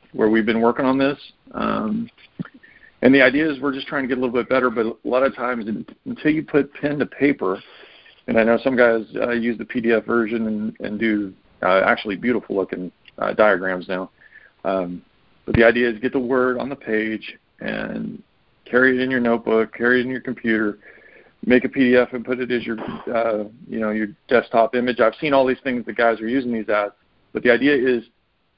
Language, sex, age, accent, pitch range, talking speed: English, male, 50-69, American, 110-130 Hz, 210 wpm